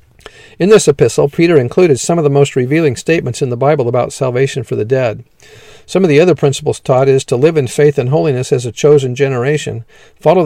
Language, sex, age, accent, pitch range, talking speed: English, male, 50-69, American, 125-150 Hz, 210 wpm